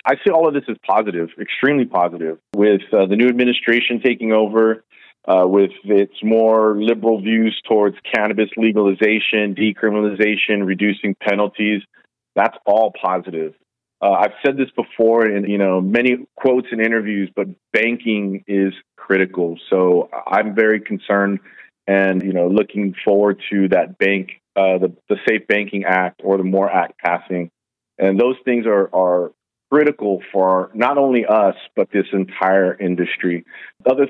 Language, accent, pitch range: English, American, 95-115 Hz